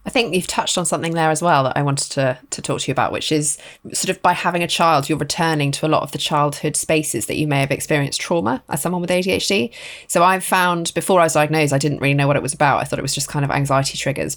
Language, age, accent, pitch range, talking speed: English, 20-39, British, 150-190 Hz, 290 wpm